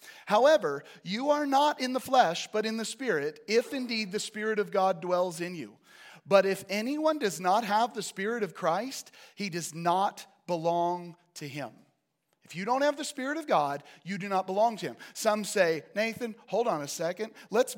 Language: English